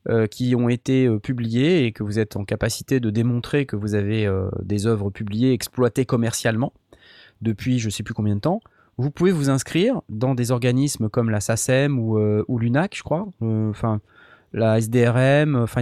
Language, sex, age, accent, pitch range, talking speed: French, male, 20-39, French, 110-145 Hz, 195 wpm